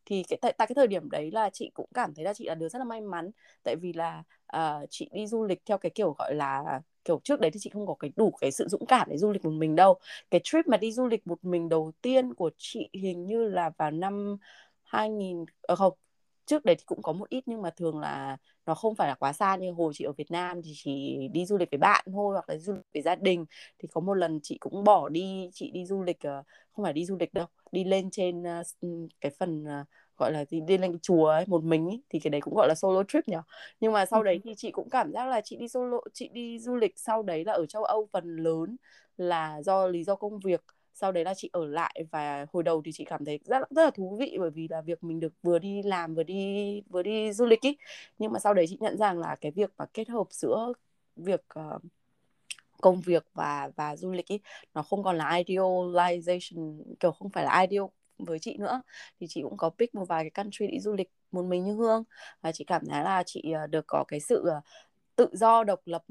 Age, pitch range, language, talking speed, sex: 20-39, 165-210 Hz, Vietnamese, 255 wpm, female